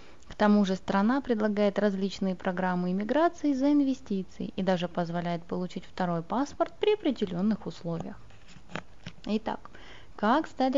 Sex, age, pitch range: female, 20-39, 185-260 Hz